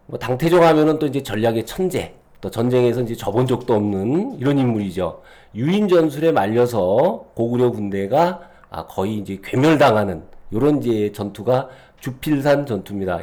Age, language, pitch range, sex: 40-59, Korean, 105-155 Hz, male